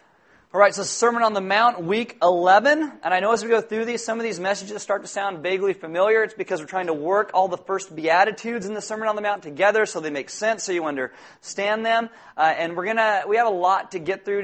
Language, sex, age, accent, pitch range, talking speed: English, male, 30-49, American, 165-205 Hz, 260 wpm